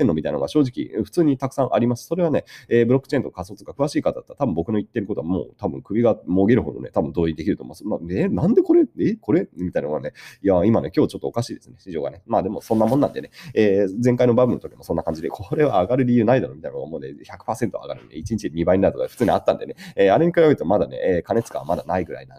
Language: Japanese